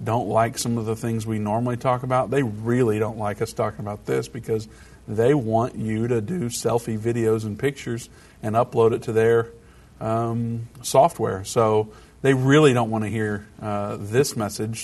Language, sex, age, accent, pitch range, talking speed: English, male, 50-69, American, 105-120 Hz, 180 wpm